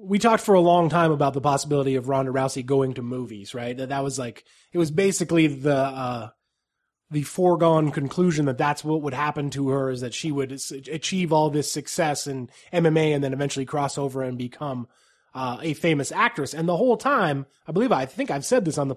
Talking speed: 215 wpm